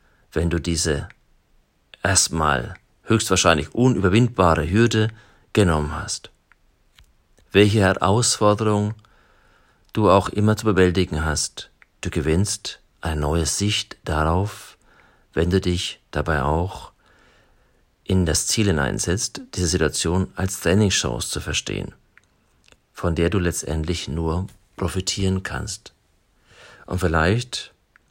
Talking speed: 100 wpm